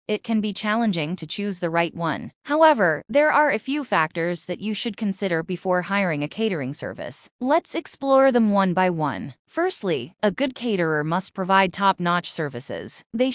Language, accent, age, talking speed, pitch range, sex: English, American, 30-49, 175 wpm, 170-230 Hz, female